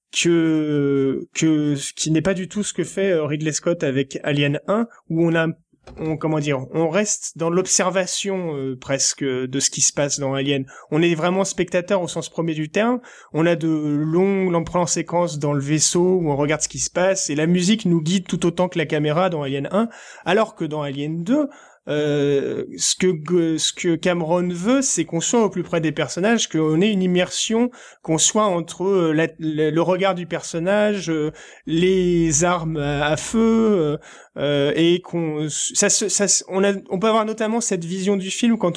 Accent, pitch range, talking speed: French, 155-195 Hz, 200 wpm